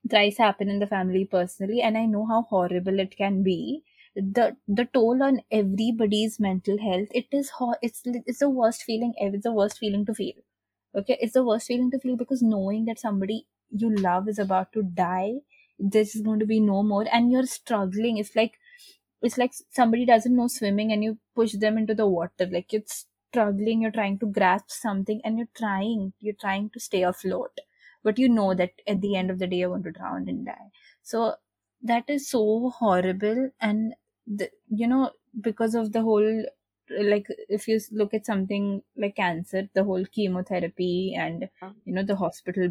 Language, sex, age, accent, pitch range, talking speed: English, female, 20-39, Indian, 195-230 Hz, 195 wpm